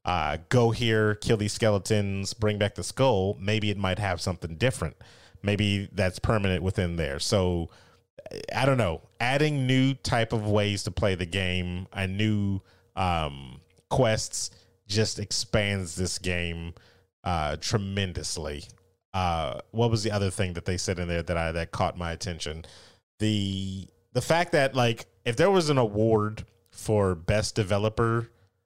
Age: 30-49